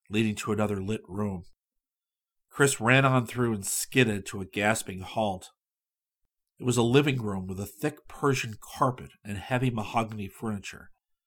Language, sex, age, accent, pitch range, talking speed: English, male, 50-69, American, 100-125 Hz, 155 wpm